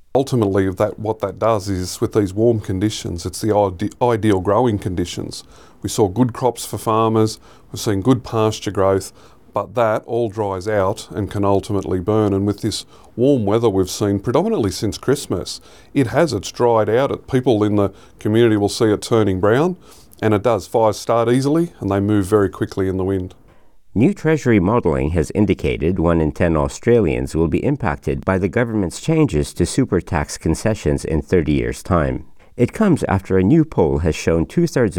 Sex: male